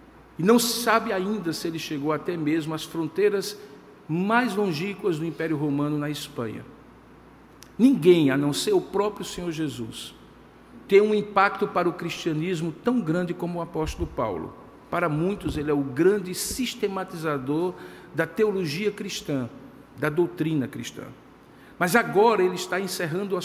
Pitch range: 165-215 Hz